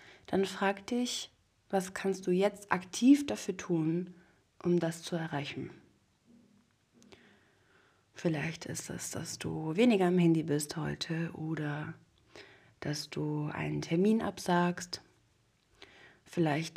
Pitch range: 160-195 Hz